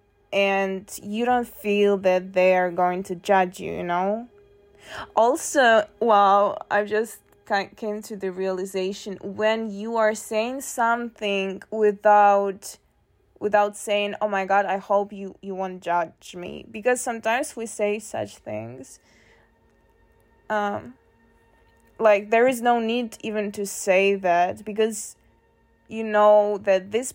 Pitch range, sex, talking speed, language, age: 185-220 Hz, female, 135 wpm, English, 20-39